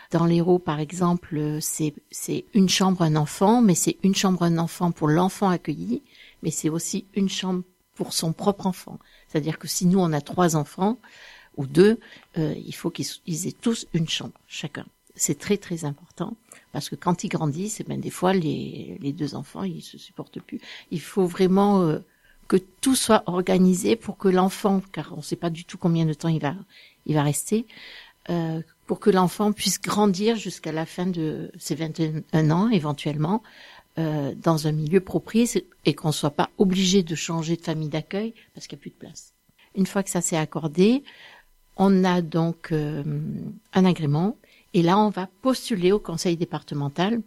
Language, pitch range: French, 160-195 Hz